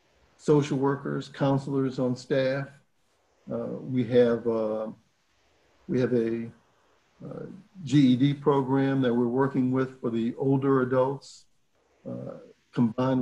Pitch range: 120-135 Hz